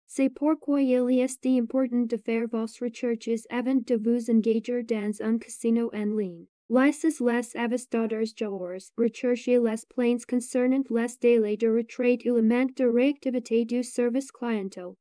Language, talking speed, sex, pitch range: French, 150 wpm, female, 225-255 Hz